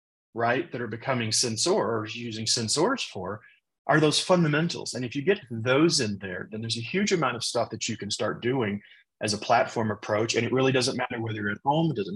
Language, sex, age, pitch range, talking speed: English, male, 30-49, 105-135 Hz, 220 wpm